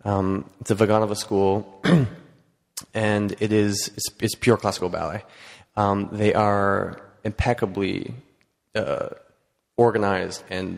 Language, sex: English, male